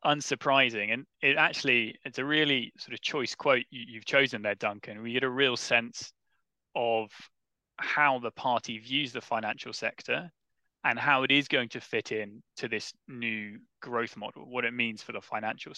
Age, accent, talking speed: 20-39, British, 180 wpm